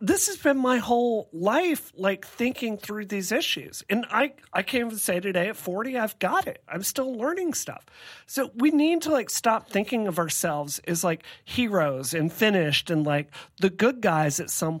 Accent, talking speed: American, 195 wpm